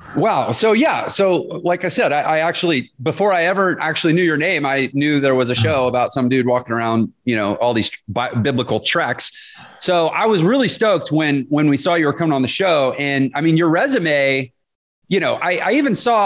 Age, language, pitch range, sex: 30-49, English, 125-200 Hz, male